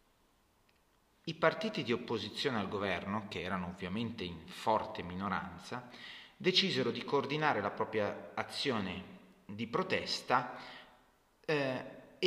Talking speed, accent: 105 wpm, native